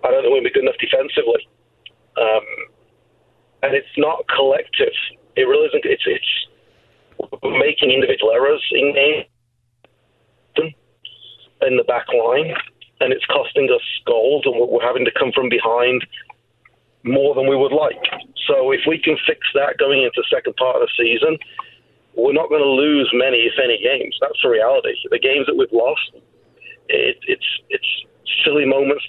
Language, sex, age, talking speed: English, male, 40-59, 165 wpm